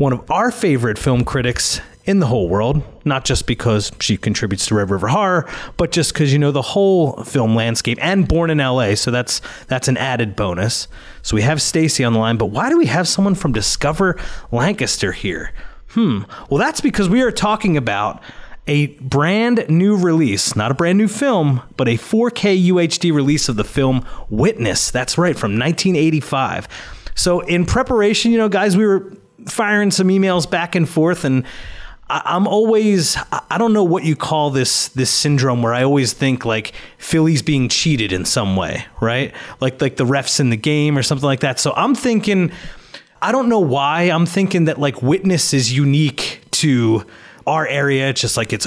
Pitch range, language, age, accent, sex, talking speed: 125-180 Hz, English, 30-49, American, male, 190 wpm